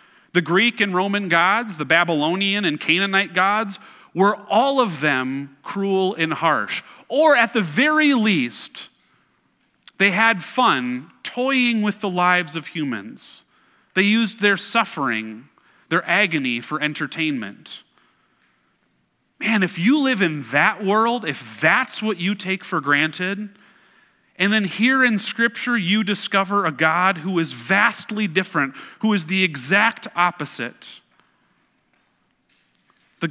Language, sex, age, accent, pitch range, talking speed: English, male, 30-49, American, 160-215 Hz, 130 wpm